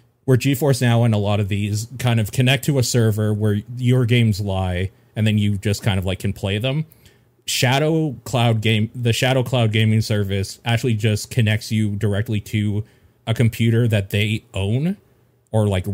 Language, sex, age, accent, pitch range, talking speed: English, male, 30-49, American, 100-125 Hz, 185 wpm